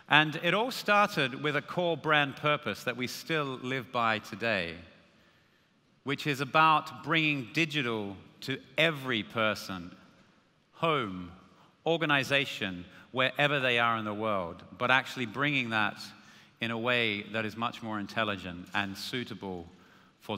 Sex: male